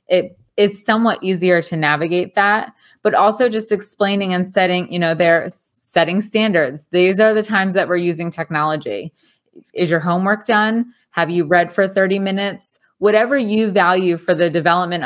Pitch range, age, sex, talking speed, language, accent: 175-205 Hz, 20-39, female, 160 wpm, English, American